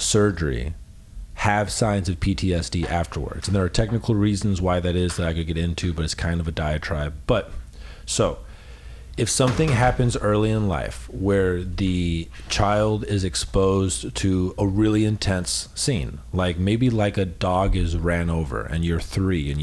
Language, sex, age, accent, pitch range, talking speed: English, male, 40-59, American, 80-105 Hz, 170 wpm